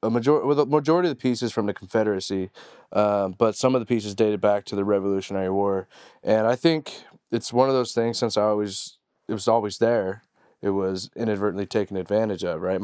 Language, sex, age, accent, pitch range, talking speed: English, male, 20-39, American, 100-120 Hz, 210 wpm